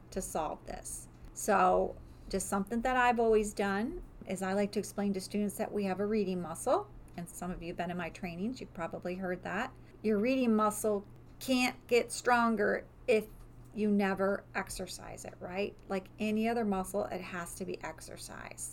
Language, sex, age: English, female, 40-59